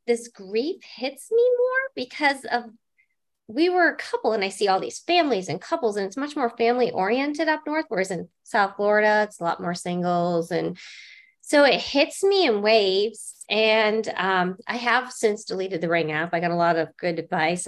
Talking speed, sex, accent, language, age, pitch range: 200 wpm, female, American, English, 20-39, 205-285 Hz